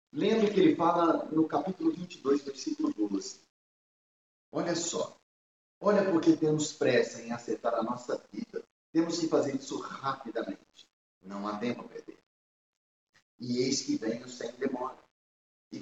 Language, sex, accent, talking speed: Portuguese, male, Brazilian, 140 wpm